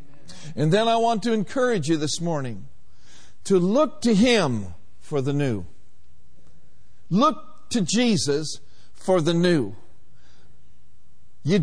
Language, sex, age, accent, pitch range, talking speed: English, male, 50-69, American, 105-175 Hz, 120 wpm